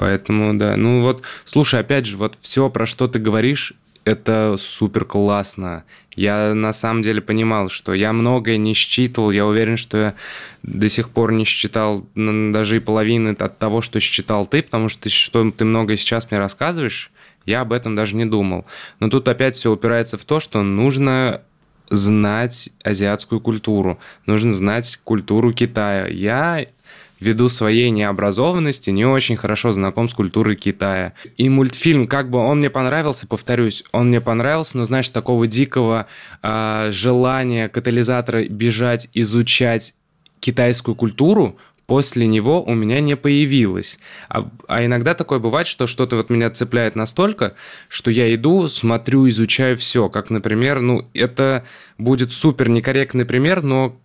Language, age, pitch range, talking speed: Russian, 20-39, 110-125 Hz, 155 wpm